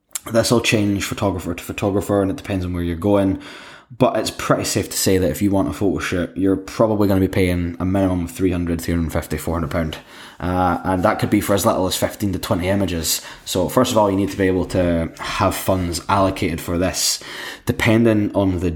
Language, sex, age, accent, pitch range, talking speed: English, male, 10-29, British, 85-100 Hz, 220 wpm